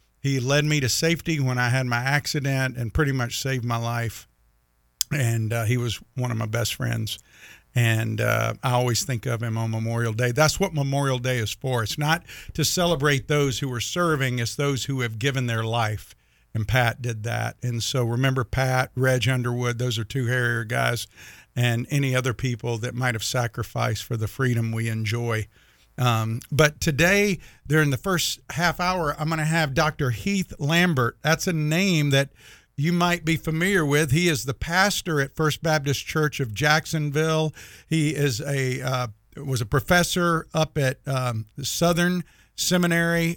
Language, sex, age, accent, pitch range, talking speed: English, male, 50-69, American, 120-160 Hz, 180 wpm